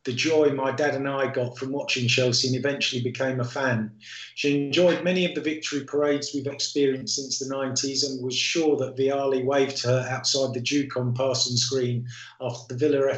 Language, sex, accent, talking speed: English, male, British, 200 wpm